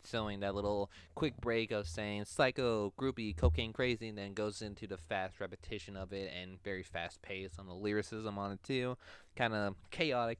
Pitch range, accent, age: 95-110 Hz, American, 20-39